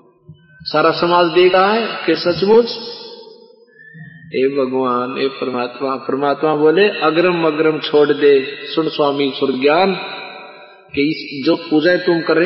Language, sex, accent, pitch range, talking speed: Hindi, male, native, 135-185 Hz, 120 wpm